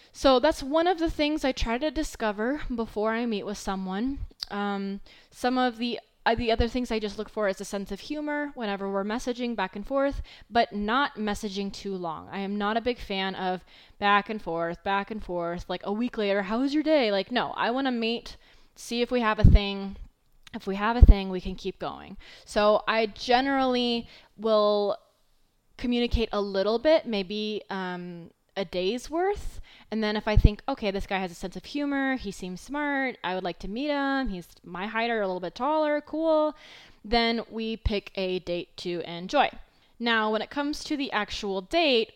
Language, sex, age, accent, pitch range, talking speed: English, female, 20-39, American, 195-245 Hz, 205 wpm